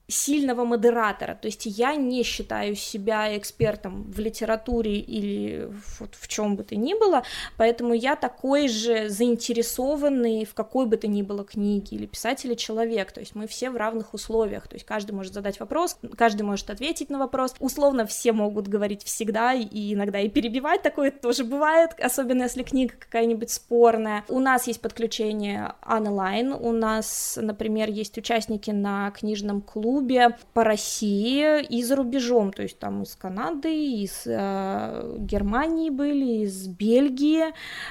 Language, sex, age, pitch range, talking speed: Russian, female, 20-39, 210-250 Hz, 155 wpm